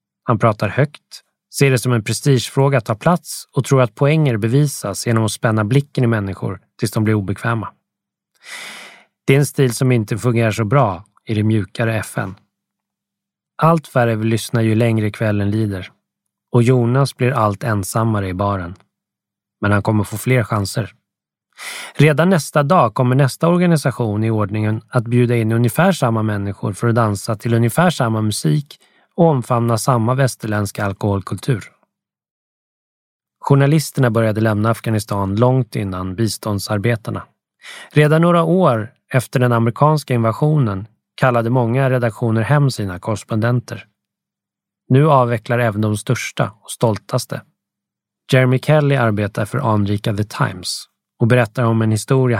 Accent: native